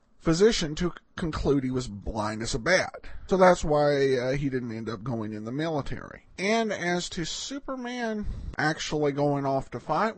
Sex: male